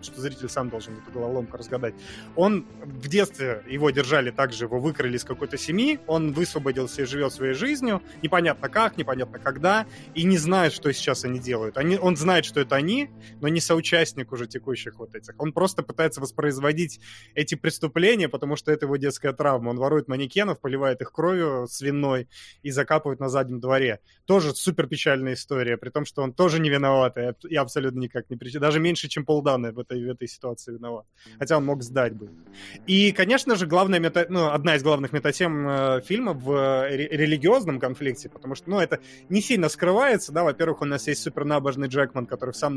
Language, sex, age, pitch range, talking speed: Russian, male, 20-39, 130-165 Hz, 185 wpm